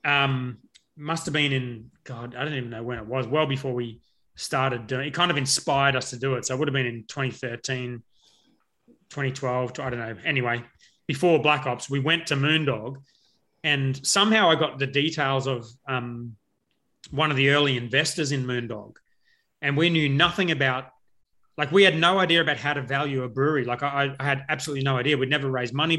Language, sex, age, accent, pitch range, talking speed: English, male, 30-49, Australian, 130-150 Hz, 205 wpm